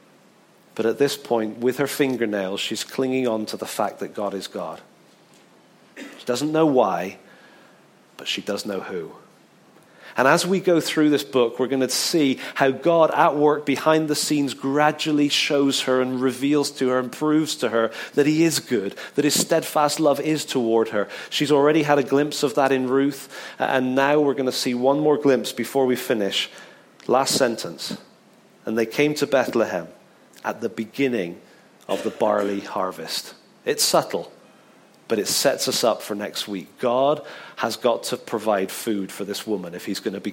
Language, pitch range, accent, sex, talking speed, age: English, 115-150 Hz, British, male, 180 wpm, 40-59